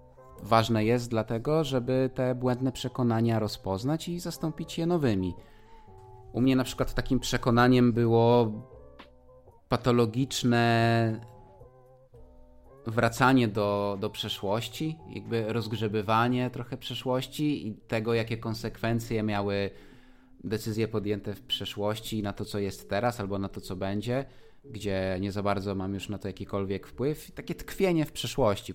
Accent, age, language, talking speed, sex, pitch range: native, 20-39, Polish, 125 wpm, male, 95-125 Hz